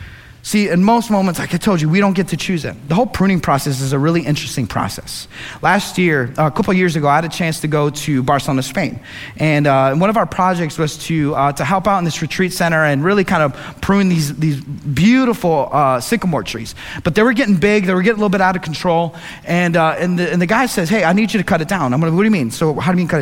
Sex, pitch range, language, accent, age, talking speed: male, 145-190 Hz, English, American, 30-49, 280 wpm